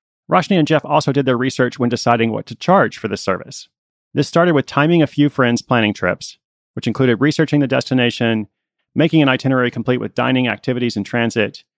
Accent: American